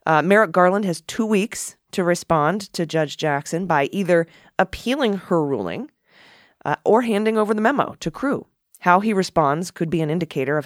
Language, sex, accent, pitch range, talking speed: English, female, American, 135-180 Hz, 180 wpm